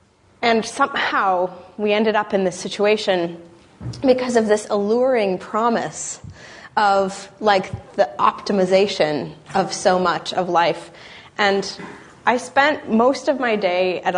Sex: female